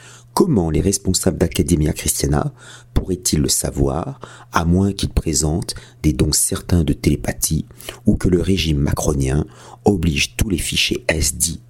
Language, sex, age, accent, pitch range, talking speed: French, male, 50-69, French, 75-95 Hz, 145 wpm